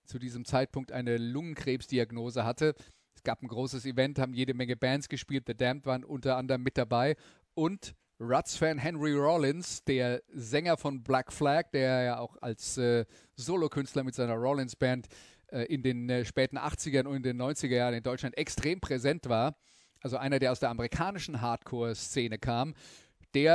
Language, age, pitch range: German, 40-59, 125-145 Hz